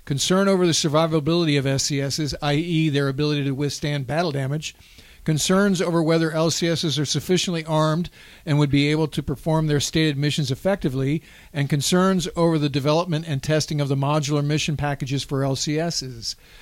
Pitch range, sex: 140-165 Hz, male